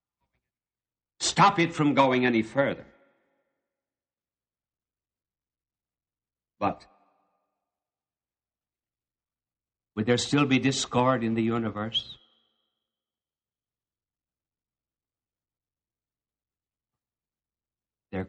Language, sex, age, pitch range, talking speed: English, male, 60-79, 85-115 Hz, 55 wpm